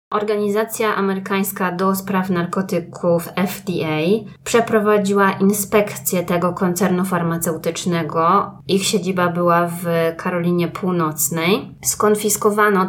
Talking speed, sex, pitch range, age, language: 85 wpm, female, 170-210 Hz, 20-39, Polish